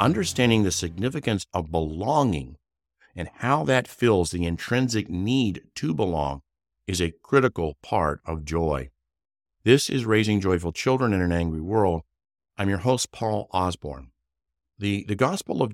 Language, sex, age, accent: English, male, 50-69, American